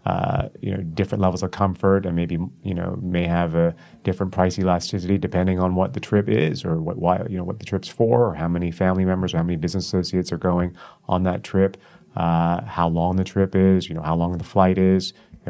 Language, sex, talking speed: English, male, 235 wpm